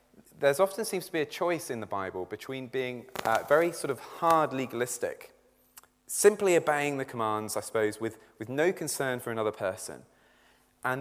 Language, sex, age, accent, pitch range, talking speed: English, male, 30-49, British, 115-165 Hz, 175 wpm